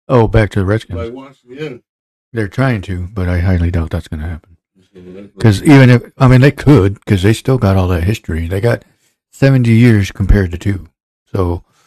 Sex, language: male, English